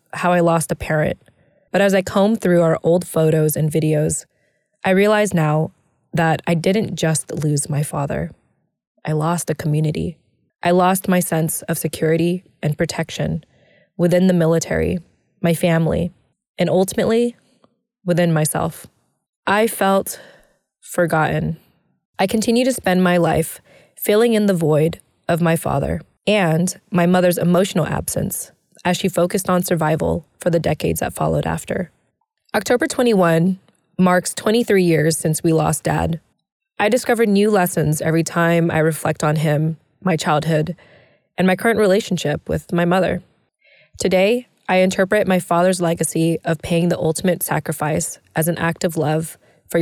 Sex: female